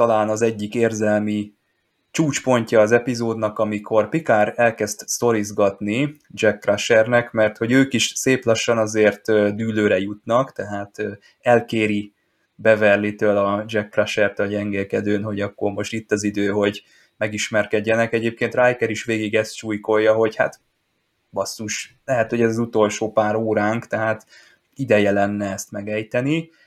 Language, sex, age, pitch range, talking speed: Hungarian, male, 20-39, 105-115 Hz, 135 wpm